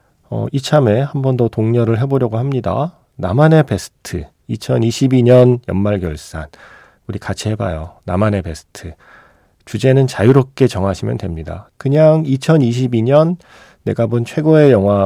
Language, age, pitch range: Korean, 40-59, 95-130 Hz